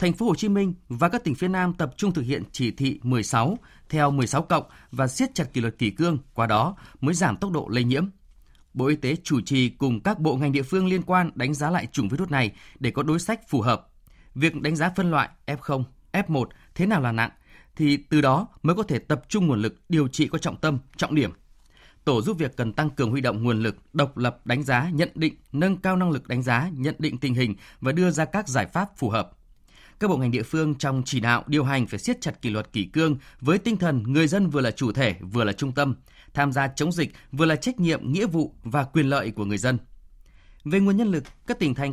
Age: 20-39